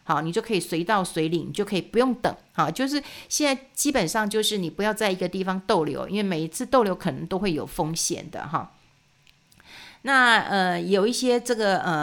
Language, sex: Chinese, female